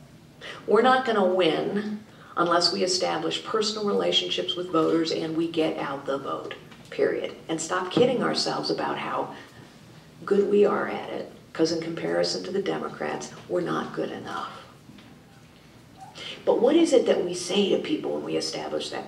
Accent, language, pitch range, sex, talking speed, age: American, English, 165-215 Hz, female, 165 wpm, 50-69